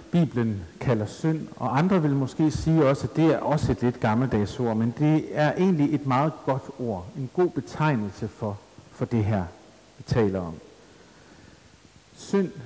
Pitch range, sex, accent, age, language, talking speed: 115-155 Hz, male, native, 60-79, Danish, 165 wpm